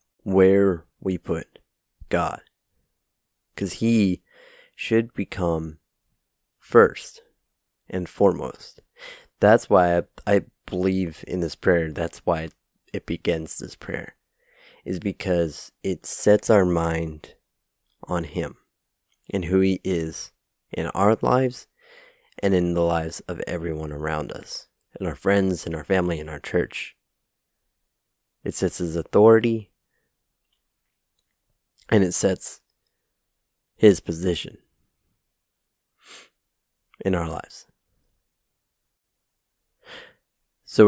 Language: English